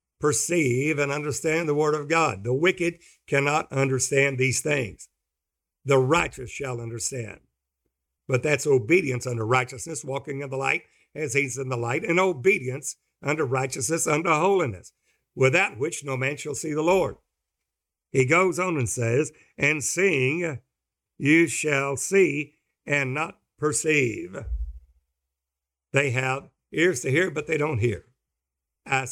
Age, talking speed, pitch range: 60-79, 140 wpm, 115-155 Hz